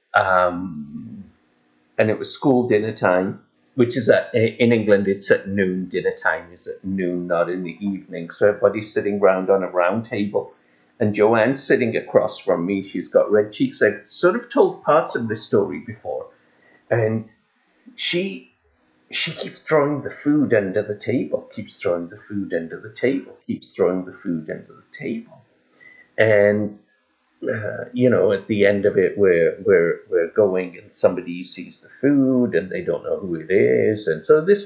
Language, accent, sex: English, British, male